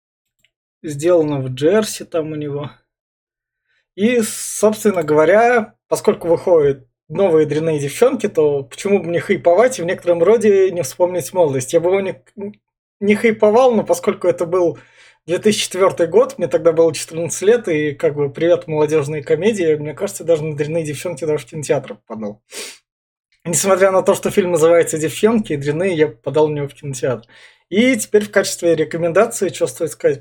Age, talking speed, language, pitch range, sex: 20-39, 165 wpm, Russian, 155-200 Hz, male